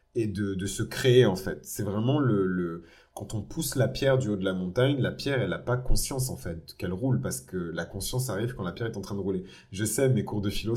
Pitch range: 95-125 Hz